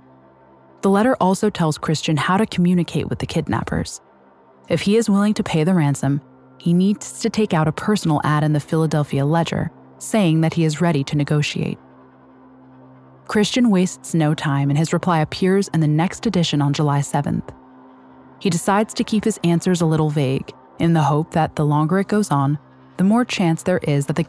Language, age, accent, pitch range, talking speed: English, 20-39, American, 130-180 Hz, 195 wpm